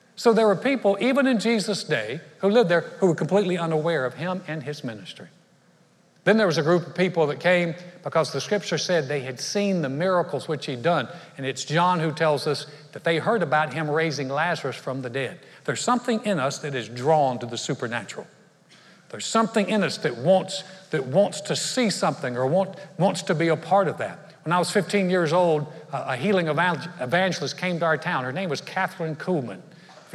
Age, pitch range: 60-79, 140-180 Hz